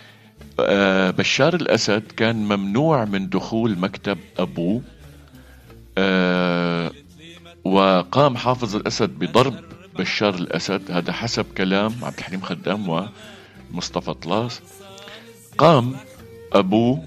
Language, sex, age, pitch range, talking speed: Arabic, male, 50-69, 90-115 Hz, 90 wpm